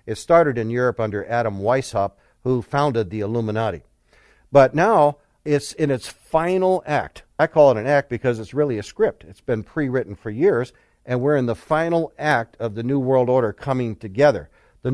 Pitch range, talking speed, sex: 115-145 Hz, 190 wpm, male